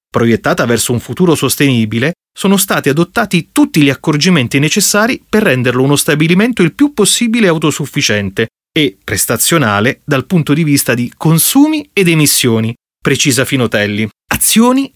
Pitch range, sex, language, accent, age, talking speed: 125-170 Hz, male, Italian, native, 30-49, 130 wpm